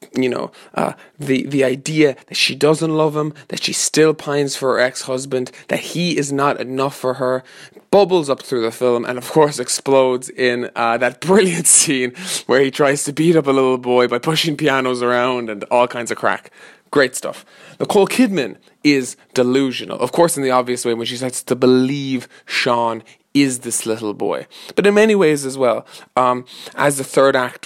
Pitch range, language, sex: 120-140 Hz, English, male